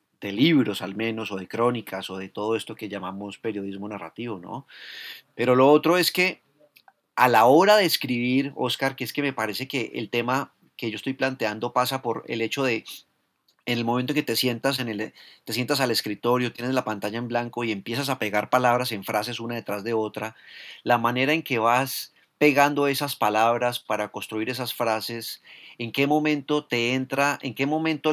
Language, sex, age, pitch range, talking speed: Spanish, male, 30-49, 115-135 Hz, 195 wpm